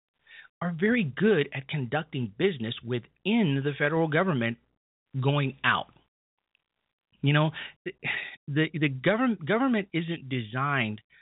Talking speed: 110 wpm